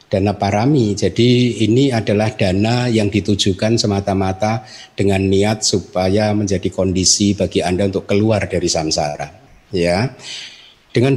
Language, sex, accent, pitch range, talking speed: Indonesian, male, native, 95-125 Hz, 120 wpm